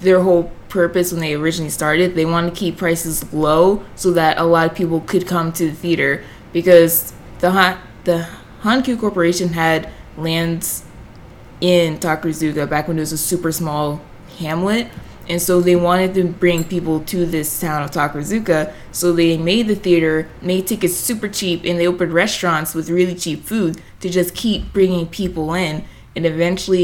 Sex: female